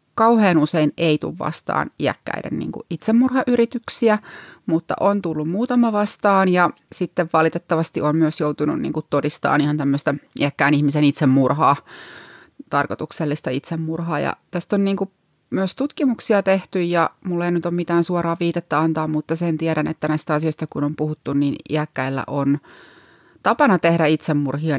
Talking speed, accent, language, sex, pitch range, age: 145 wpm, native, Finnish, female, 145-175 Hz, 30-49